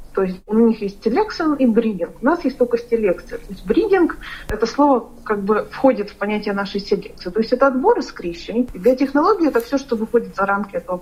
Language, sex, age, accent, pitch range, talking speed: Russian, female, 40-59, native, 190-235 Hz, 225 wpm